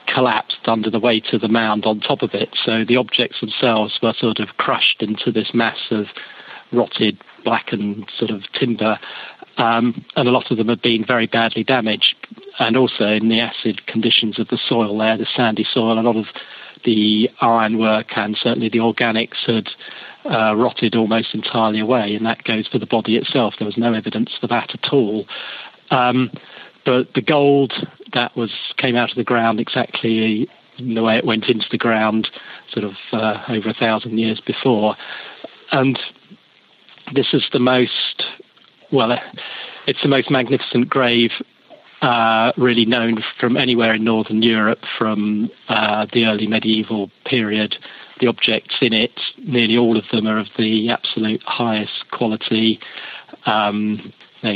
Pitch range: 110-120 Hz